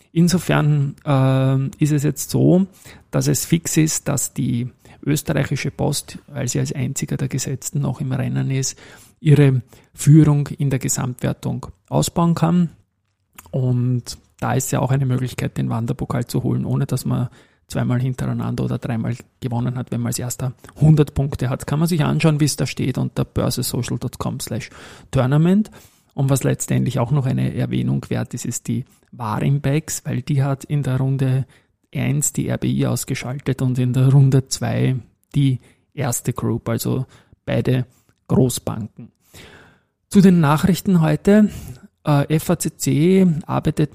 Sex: male